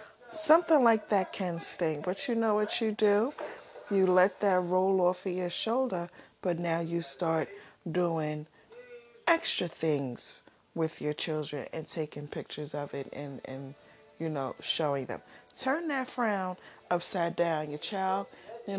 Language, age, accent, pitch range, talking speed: English, 40-59, American, 155-210 Hz, 155 wpm